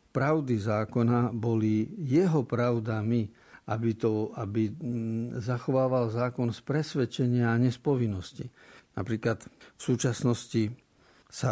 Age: 50-69